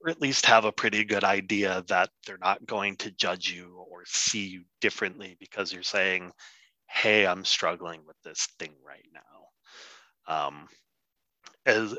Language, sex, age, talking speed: English, male, 30-49, 160 wpm